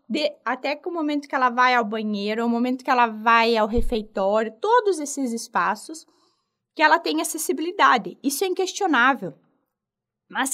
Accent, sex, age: Brazilian, female, 20-39